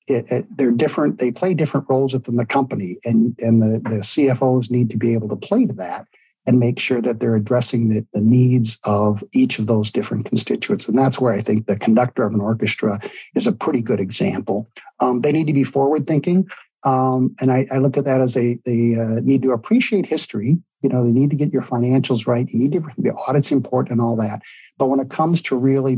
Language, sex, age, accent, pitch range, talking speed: English, male, 60-79, American, 110-130 Hz, 225 wpm